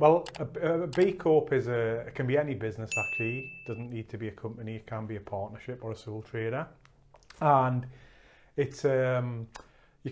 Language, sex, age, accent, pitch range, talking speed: English, male, 30-49, British, 110-130 Hz, 165 wpm